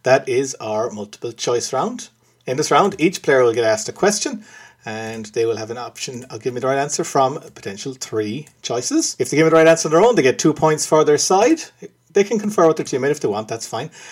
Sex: male